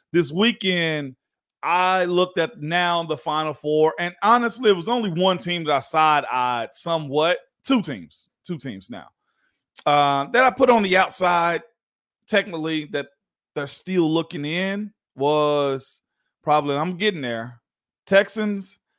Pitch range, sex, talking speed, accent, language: 145-185 Hz, male, 140 wpm, American, English